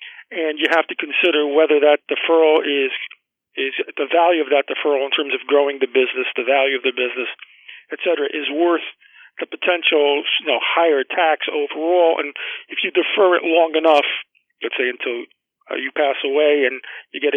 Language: English